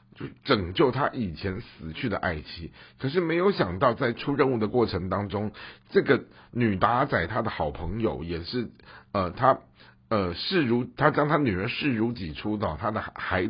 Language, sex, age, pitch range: Chinese, male, 50-69, 80-120 Hz